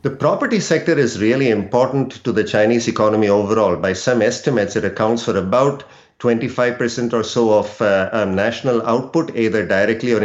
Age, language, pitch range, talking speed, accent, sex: 50-69, English, 110-135 Hz, 170 wpm, Indian, male